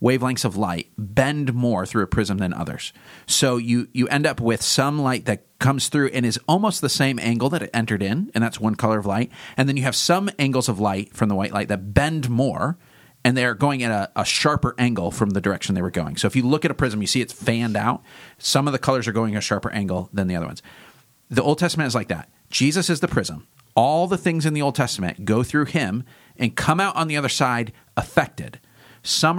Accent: American